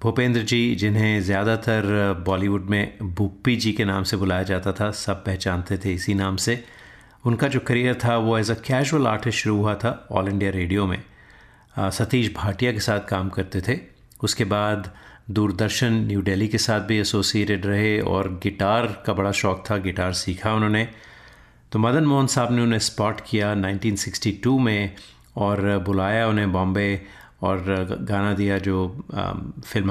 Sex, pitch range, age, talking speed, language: male, 100-115 Hz, 30-49, 165 wpm, Hindi